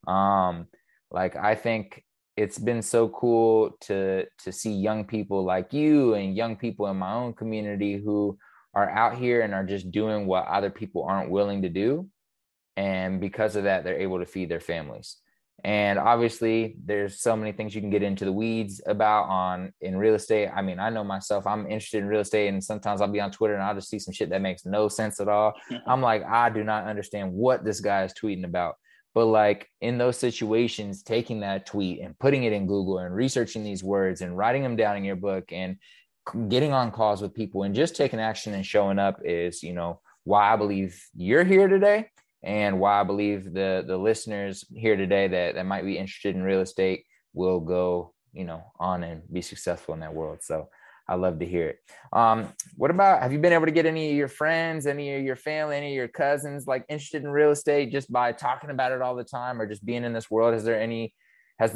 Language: English